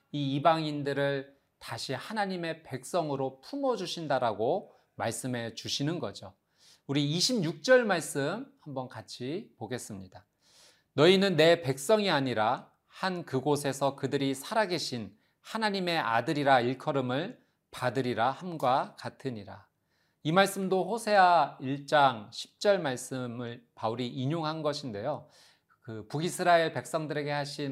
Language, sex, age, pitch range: Korean, male, 40-59, 125-180 Hz